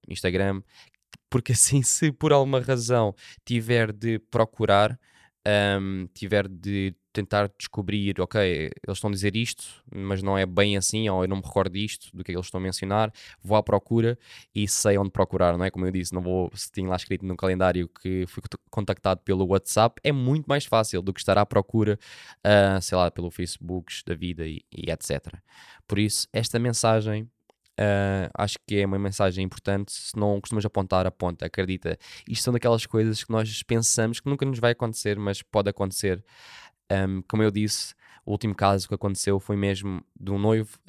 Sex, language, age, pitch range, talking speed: male, Portuguese, 10-29, 95-115 Hz, 190 wpm